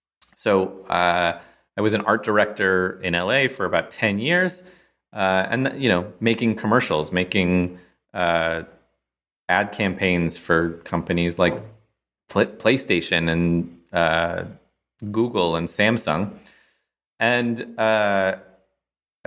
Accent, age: American, 30-49